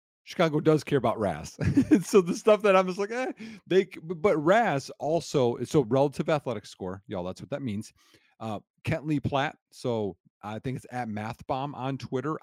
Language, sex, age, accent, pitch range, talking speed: English, male, 40-59, American, 110-150 Hz, 190 wpm